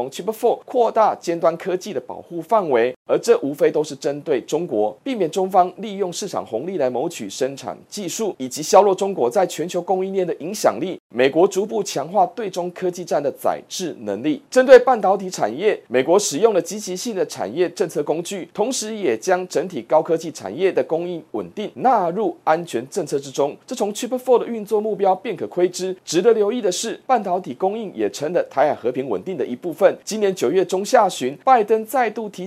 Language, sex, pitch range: Chinese, male, 165-225 Hz